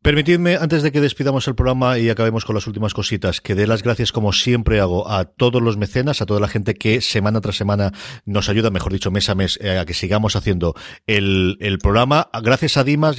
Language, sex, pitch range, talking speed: Spanish, male, 95-120 Hz, 225 wpm